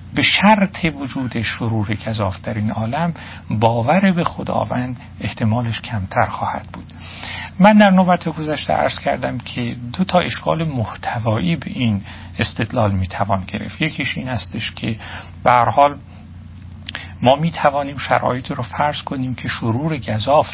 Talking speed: 135 wpm